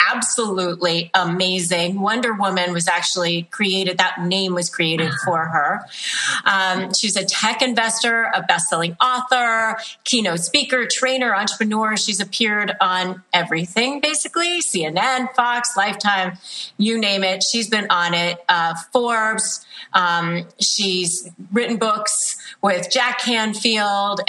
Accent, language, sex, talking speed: American, English, female, 120 wpm